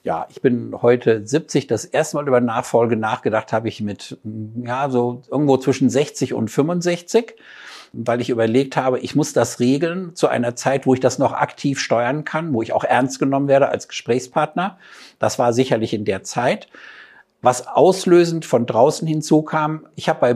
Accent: German